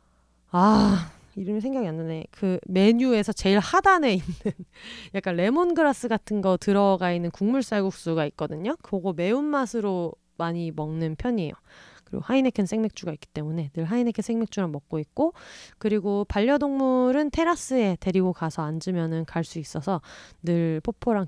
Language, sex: Korean, female